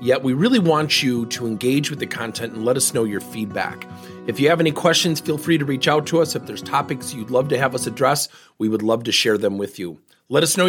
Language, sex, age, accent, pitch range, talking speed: English, male, 40-59, American, 110-160 Hz, 270 wpm